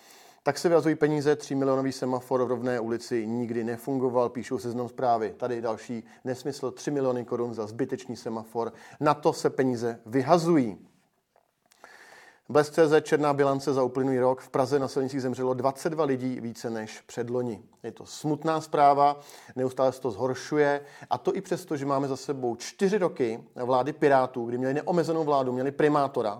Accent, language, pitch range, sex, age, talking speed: native, Czech, 125-145 Hz, male, 40-59, 165 wpm